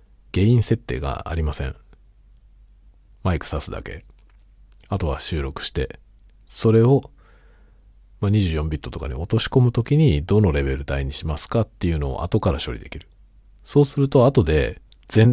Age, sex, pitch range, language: 50-69, male, 70-105 Hz, Japanese